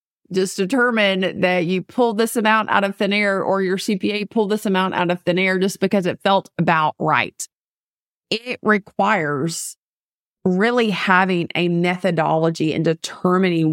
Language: English